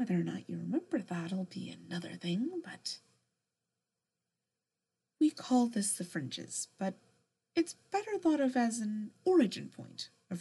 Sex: female